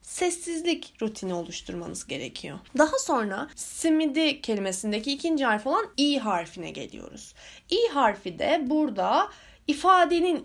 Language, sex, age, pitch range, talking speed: Turkish, female, 10-29, 205-300 Hz, 110 wpm